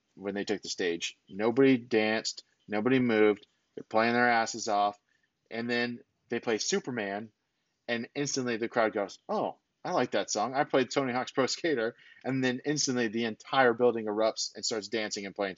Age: 30-49